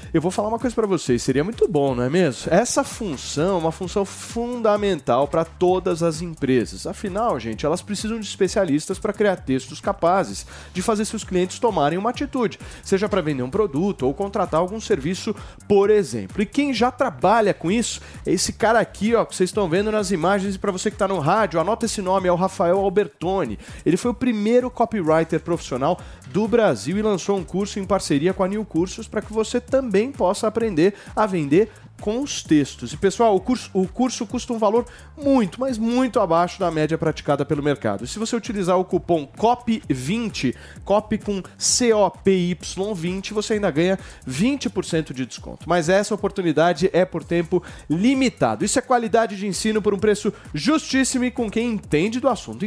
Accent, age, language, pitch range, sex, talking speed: Brazilian, 30-49, Portuguese, 170-225 Hz, male, 190 wpm